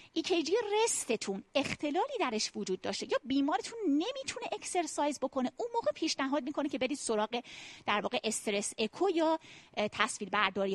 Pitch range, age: 215-300 Hz, 30-49